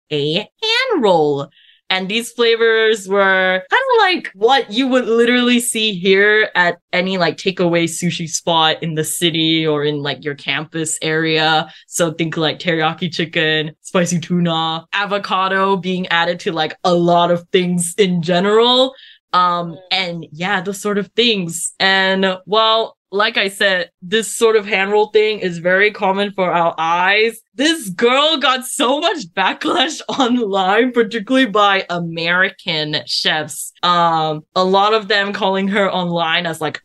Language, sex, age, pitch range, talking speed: English, female, 20-39, 170-220 Hz, 150 wpm